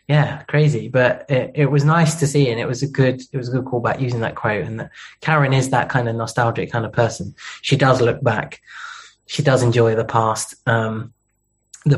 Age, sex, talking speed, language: 20-39, male, 220 wpm, English